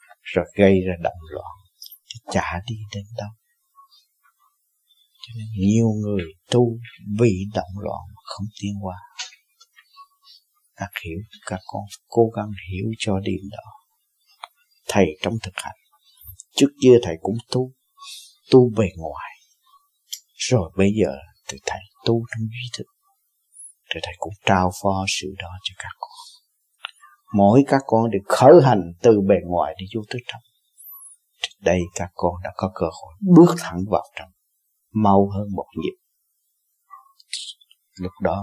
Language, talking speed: Vietnamese, 145 wpm